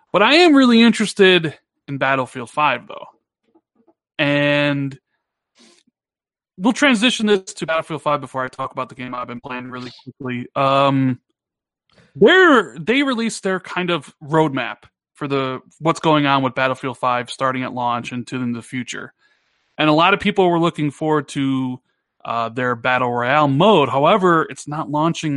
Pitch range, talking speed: 130-170 Hz, 160 wpm